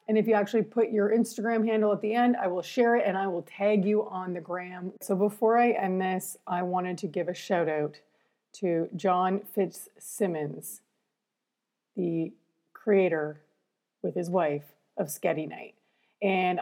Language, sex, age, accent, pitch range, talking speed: English, female, 30-49, American, 175-215 Hz, 170 wpm